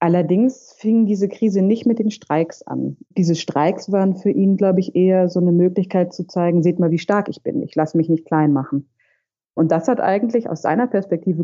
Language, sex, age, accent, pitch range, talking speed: German, female, 30-49, German, 155-190 Hz, 215 wpm